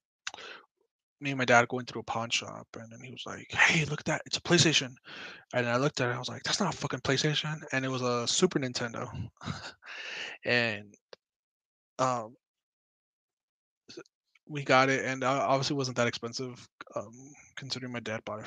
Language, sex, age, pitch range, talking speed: English, male, 20-39, 120-140 Hz, 180 wpm